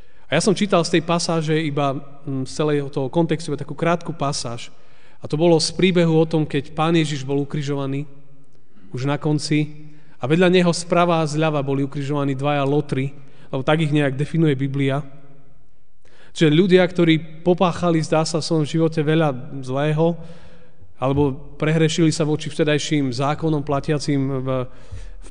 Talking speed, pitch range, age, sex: 155 wpm, 130-160 Hz, 30-49, male